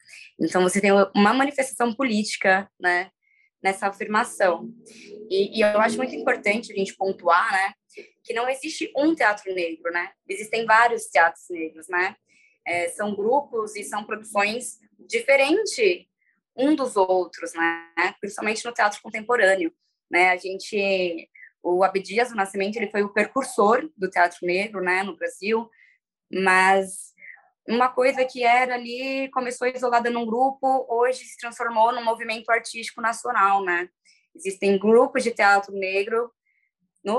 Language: Portuguese